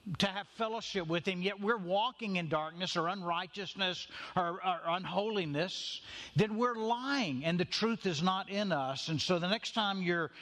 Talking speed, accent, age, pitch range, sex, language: 180 wpm, American, 50-69, 165-205 Hz, male, English